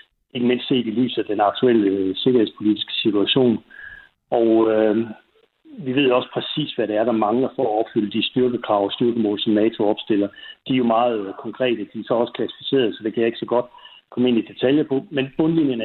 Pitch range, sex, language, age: 110-135 Hz, male, Danish, 60-79